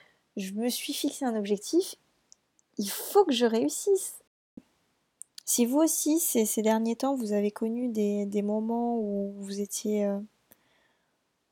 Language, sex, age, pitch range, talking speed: French, female, 20-39, 205-240 Hz, 145 wpm